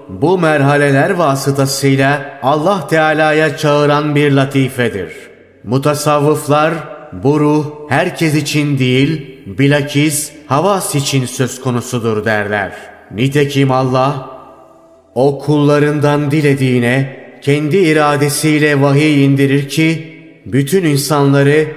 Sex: male